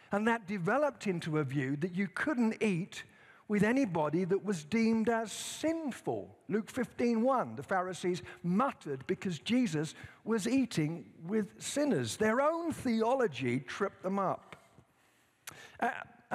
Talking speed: 130 wpm